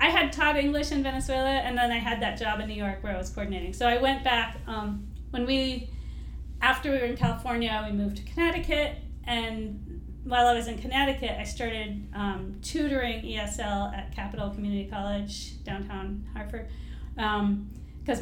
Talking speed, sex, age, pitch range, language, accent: 175 wpm, female, 40-59, 200-245 Hz, English, American